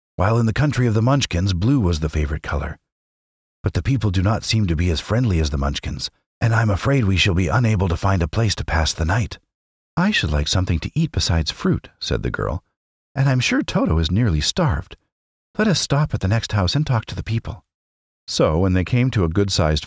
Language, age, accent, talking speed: English, 50-69, American, 235 wpm